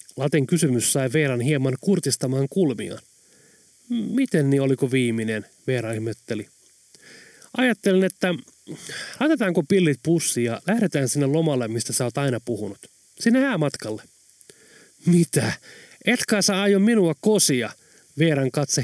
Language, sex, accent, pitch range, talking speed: Finnish, male, native, 130-185 Hz, 120 wpm